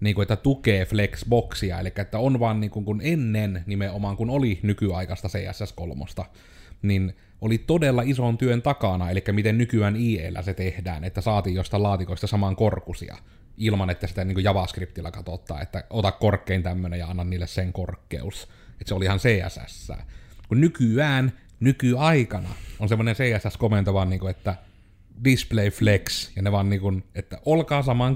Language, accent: Finnish, native